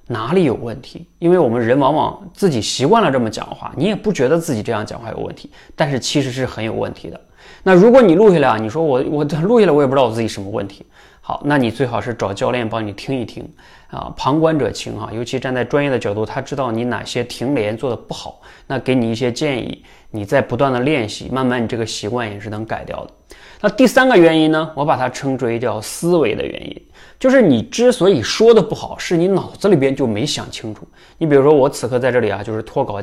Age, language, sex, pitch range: 20-39, Chinese, male, 115-165 Hz